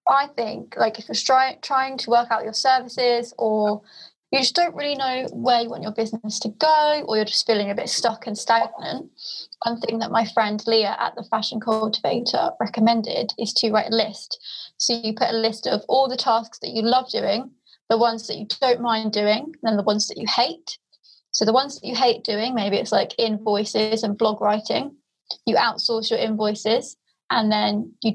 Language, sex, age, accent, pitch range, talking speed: English, female, 20-39, British, 215-245 Hz, 205 wpm